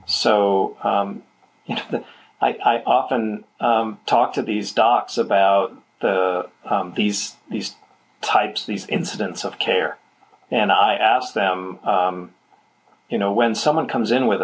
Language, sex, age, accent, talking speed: English, male, 40-59, American, 145 wpm